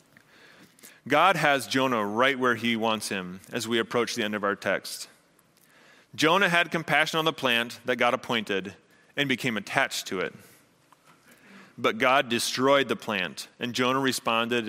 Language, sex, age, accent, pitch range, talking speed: English, male, 30-49, American, 115-155 Hz, 155 wpm